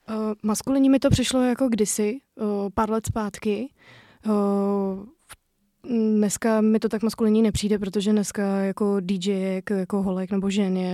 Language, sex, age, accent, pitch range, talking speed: Czech, female, 20-39, native, 190-210 Hz, 150 wpm